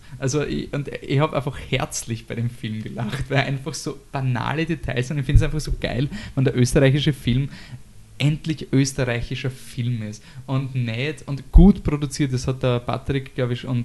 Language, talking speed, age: German, 185 wpm, 20-39